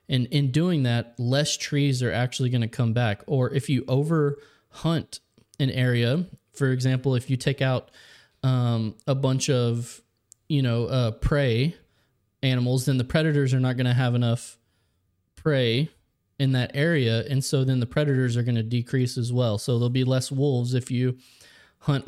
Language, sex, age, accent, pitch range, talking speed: English, male, 20-39, American, 120-140 Hz, 180 wpm